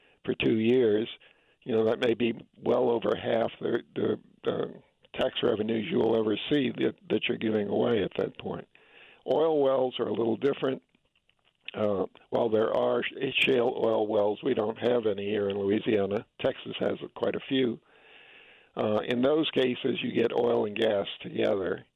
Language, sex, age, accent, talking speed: English, male, 50-69, American, 170 wpm